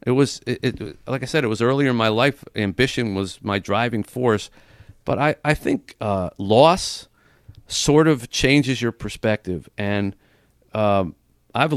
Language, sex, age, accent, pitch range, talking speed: English, male, 50-69, American, 90-110 Hz, 165 wpm